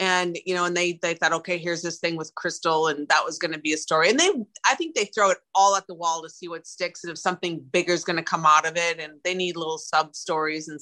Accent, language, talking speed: American, English, 300 wpm